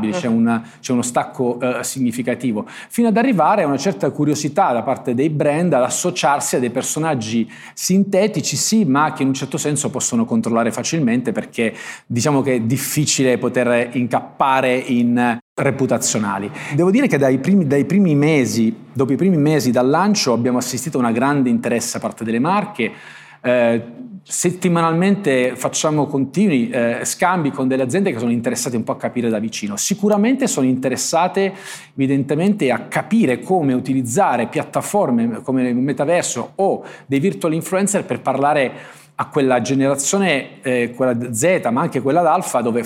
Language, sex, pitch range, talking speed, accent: Italian, male, 125-165 Hz, 155 wpm, native